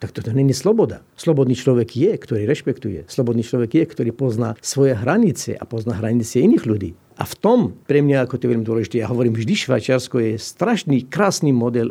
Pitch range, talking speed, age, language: 120-170 Hz, 195 wpm, 50-69, Slovak